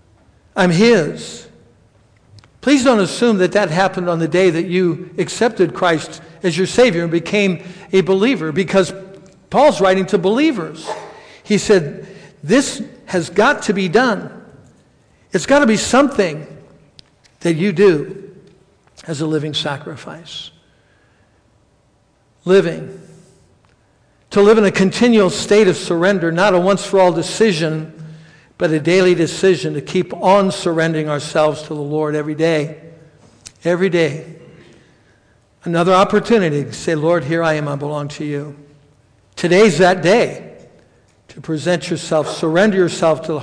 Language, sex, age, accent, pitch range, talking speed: English, male, 60-79, American, 145-195 Hz, 140 wpm